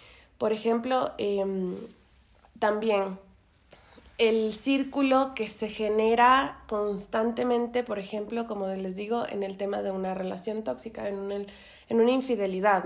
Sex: female